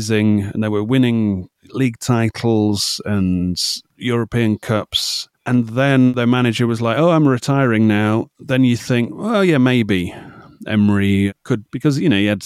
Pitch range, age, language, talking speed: 105-130 Hz, 30-49, English, 155 wpm